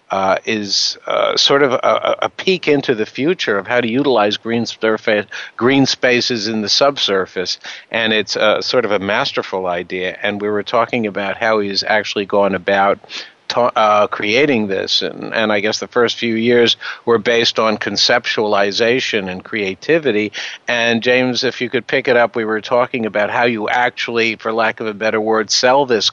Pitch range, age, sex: 105-125 Hz, 60-79, male